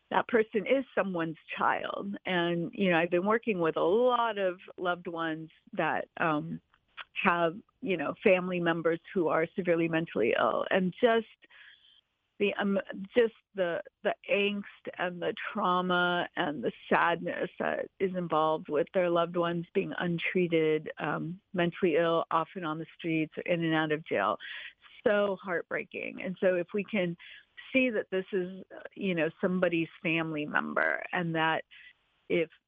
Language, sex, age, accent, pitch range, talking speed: English, female, 50-69, American, 160-195 Hz, 150 wpm